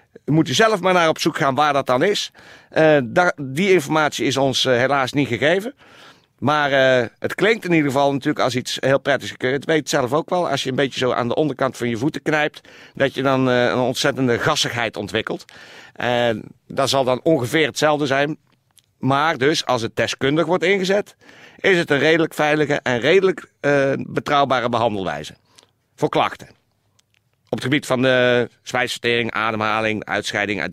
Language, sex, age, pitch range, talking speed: Dutch, male, 50-69, 105-145 Hz, 185 wpm